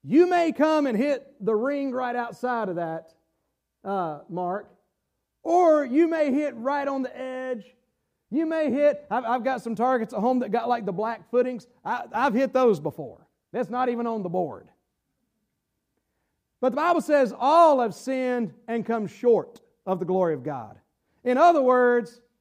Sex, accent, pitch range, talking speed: male, American, 235-285 Hz, 175 wpm